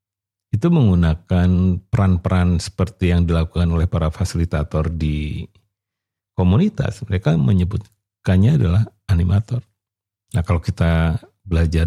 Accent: native